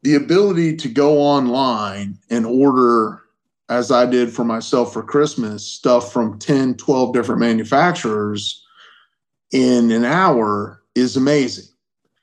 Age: 30-49